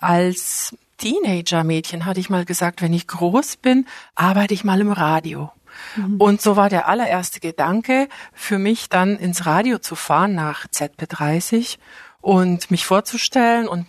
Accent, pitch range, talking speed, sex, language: German, 170-215 Hz, 150 wpm, female, German